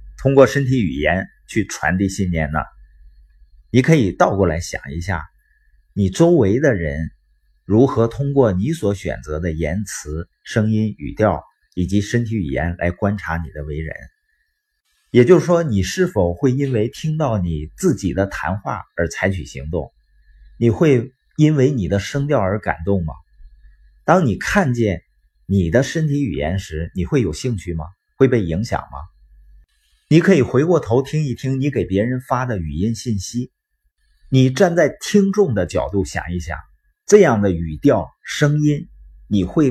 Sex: male